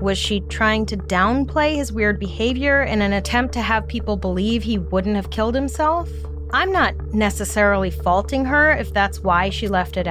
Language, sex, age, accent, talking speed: English, female, 30-49, American, 185 wpm